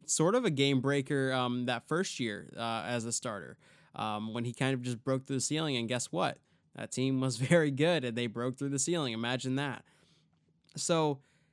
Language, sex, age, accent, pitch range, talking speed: English, male, 20-39, American, 125-160 Hz, 210 wpm